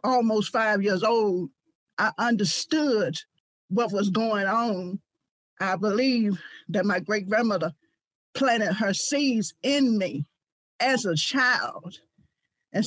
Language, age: English, 50-69